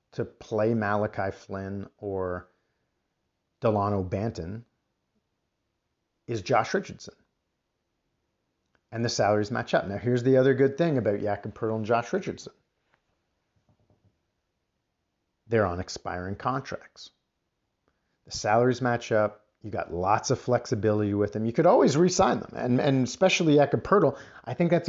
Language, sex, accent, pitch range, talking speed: English, male, American, 105-125 Hz, 135 wpm